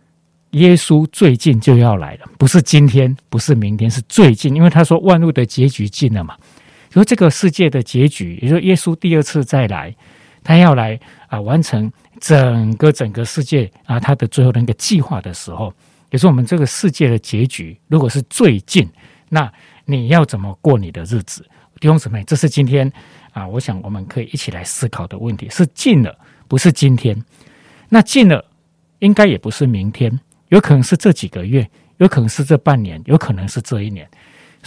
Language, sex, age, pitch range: Chinese, male, 50-69, 115-160 Hz